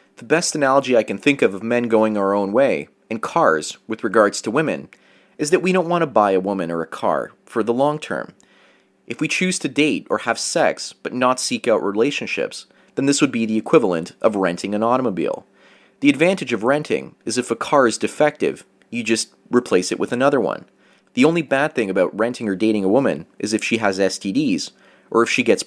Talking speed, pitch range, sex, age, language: 220 wpm, 105-150 Hz, male, 30-49, English